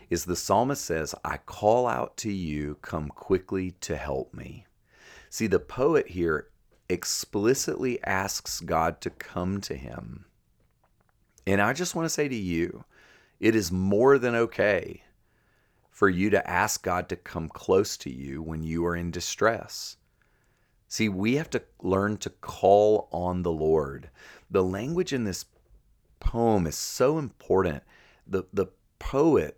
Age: 40-59